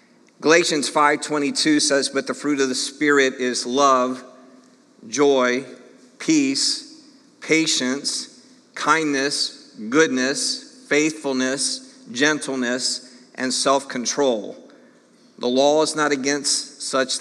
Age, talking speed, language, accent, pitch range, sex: 50-69, 90 wpm, English, American, 130-160 Hz, male